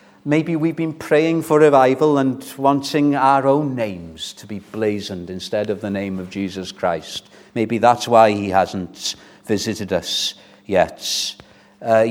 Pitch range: 100-135 Hz